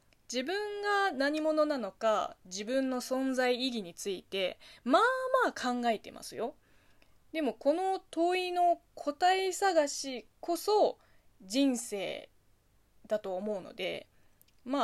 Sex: female